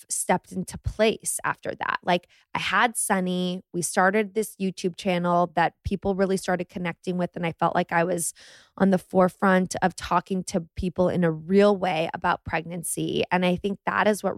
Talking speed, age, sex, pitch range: 190 wpm, 20-39, female, 175-200 Hz